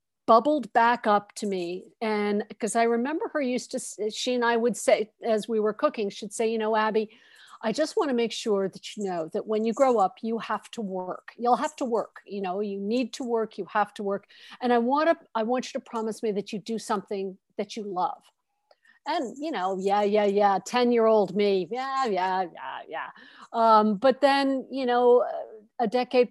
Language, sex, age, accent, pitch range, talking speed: English, female, 50-69, American, 205-250 Hz, 215 wpm